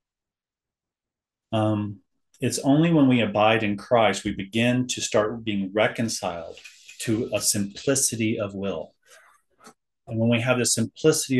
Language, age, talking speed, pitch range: English, 30-49, 130 wpm, 105-130 Hz